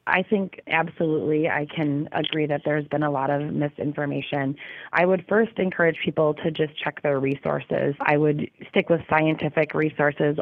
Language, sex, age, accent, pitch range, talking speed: English, female, 30-49, American, 145-160 Hz, 165 wpm